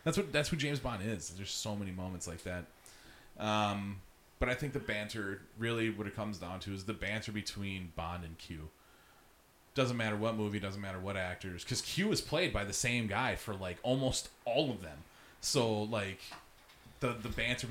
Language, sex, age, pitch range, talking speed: English, male, 30-49, 85-115 Hz, 205 wpm